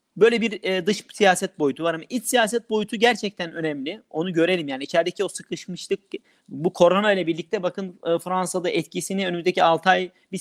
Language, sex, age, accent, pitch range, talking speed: Turkish, male, 40-59, native, 160-210 Hz, 185 wpm